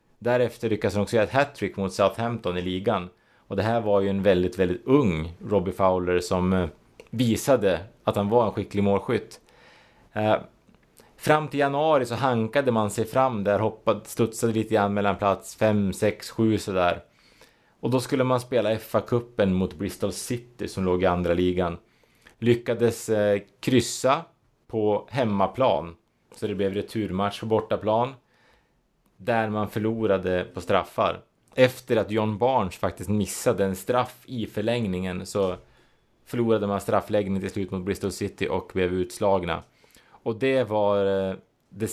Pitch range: 95-115 Hz